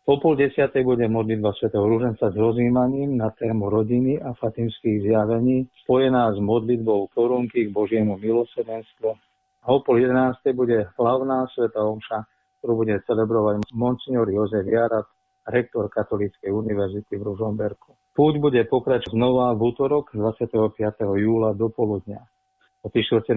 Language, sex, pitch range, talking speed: Slovak, male, 110-125 Hz, 135 wpm